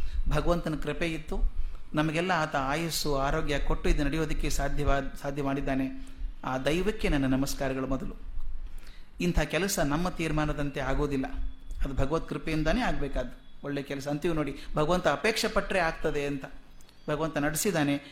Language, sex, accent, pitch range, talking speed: Kannada, male, native, 140-185 Hz, 125 wpm